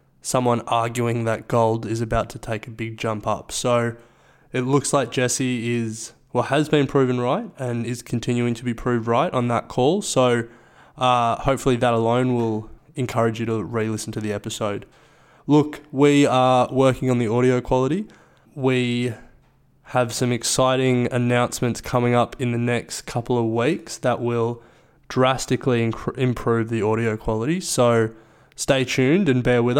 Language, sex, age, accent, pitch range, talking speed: English, male, 20-39, Australian, 120-135 Hz, 165 wpm